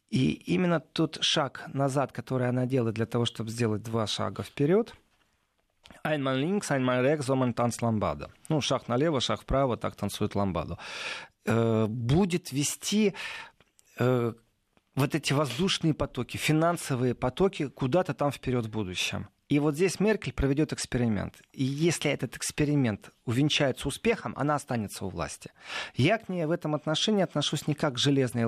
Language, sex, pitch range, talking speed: Russian, male, 120-155 Hz, 135 wpm